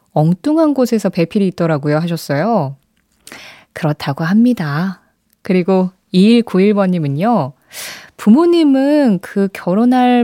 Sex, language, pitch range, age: female, Korean, 180-255 Hz, 20-39